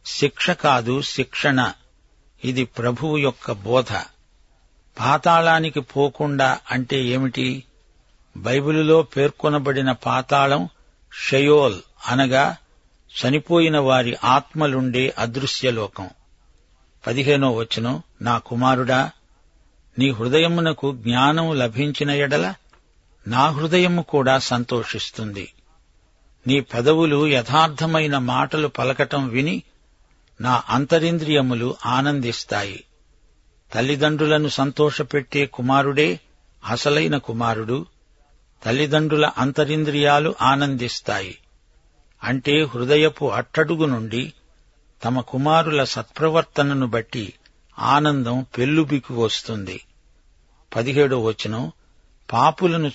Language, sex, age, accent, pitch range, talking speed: Telugu, male, 60-79, native, 120-150 Hz, 75 wpm